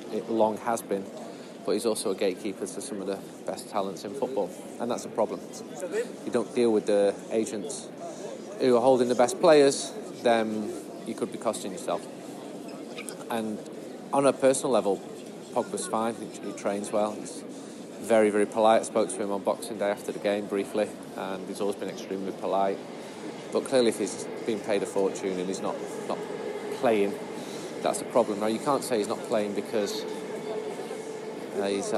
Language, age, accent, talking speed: English, 30-49, British, 180 wpm